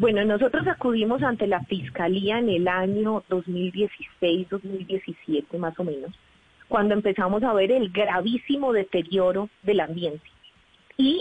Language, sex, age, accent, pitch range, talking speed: Spanish, female, 30-49, Colombian, 185-245 Hz, 125 wpm